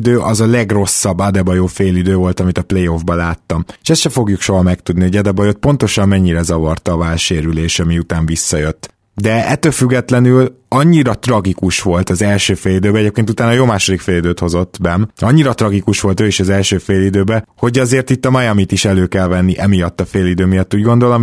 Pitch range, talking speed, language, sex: 90-105 Hz, 180 wpm, Hungarian, male